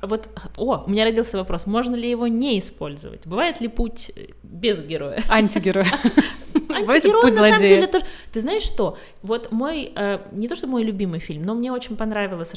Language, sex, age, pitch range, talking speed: Russian, female, 20-39, 185-235 Hz, 175 wpm